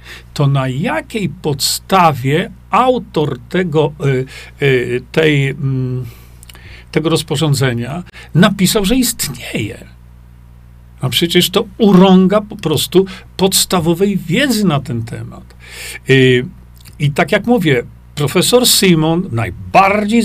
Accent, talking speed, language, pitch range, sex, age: native, 85 wpm, Polish, 125-185 Hz, male, 50-69